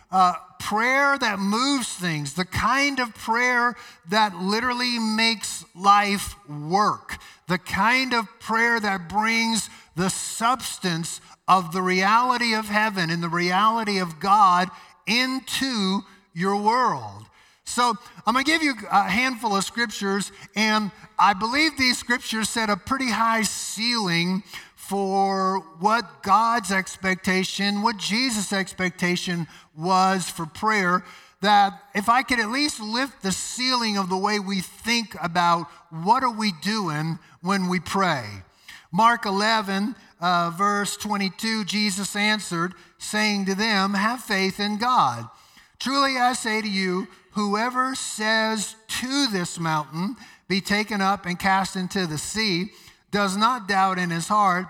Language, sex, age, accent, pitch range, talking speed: English, male, 50-69, American, 185-225 Hz, 140 wpm